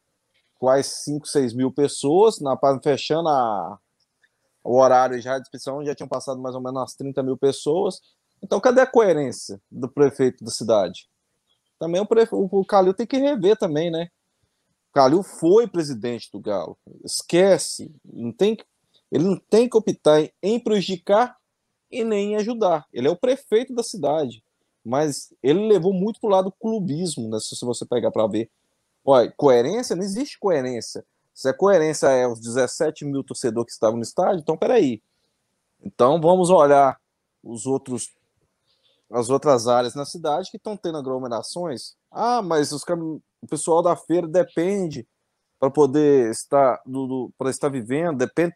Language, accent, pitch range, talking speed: Portuguese, Brazilian, 130-190 Hz, 165 wpm